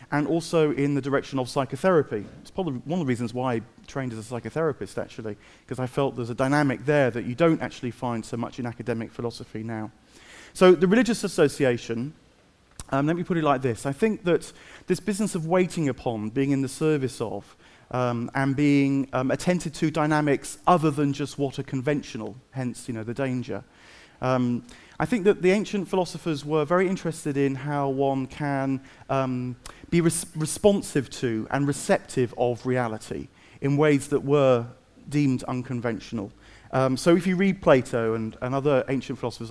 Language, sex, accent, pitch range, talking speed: English, male, British, 125-165 Hz, 180 wpm